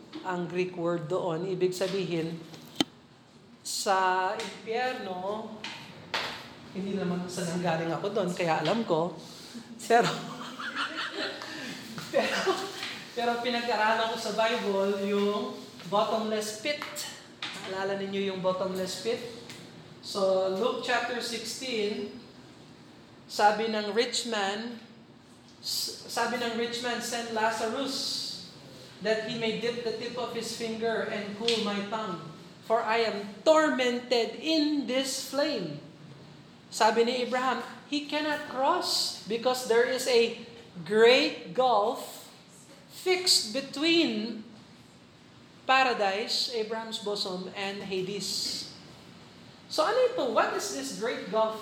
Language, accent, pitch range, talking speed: Filipino, native, 195-240 Hz, 105 wpm